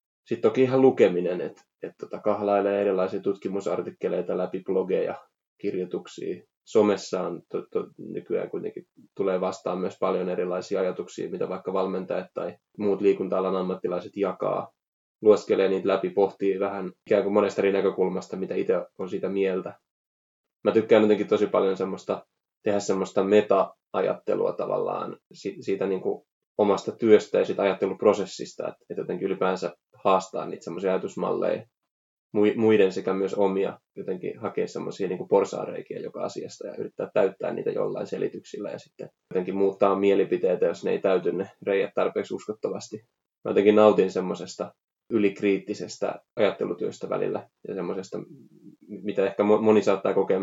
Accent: native